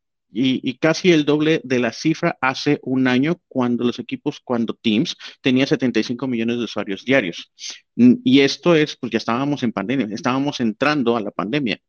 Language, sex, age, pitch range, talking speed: Spanish, male, 40-59, 120-150 Hz, 175 wpm